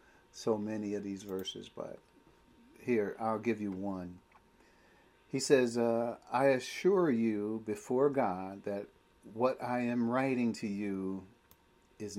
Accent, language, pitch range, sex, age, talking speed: American, English, 105-140 Hz, male, 50-69, 135 wpm